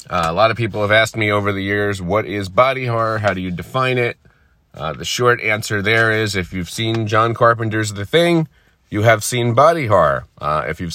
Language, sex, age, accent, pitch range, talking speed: English, male, 30-49, American, 95-120 Hz, 225 wpm